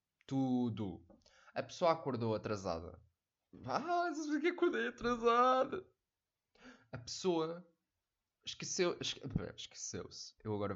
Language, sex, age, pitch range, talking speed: Portuguese, male, 20-39, 110-180 Hz, 100 wpm